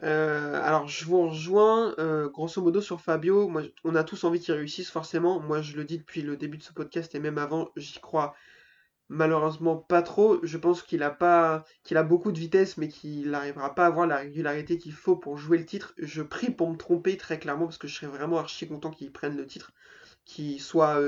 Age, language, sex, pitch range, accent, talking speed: 20-39, French, male, 150-180 Hz, French, 220 wpm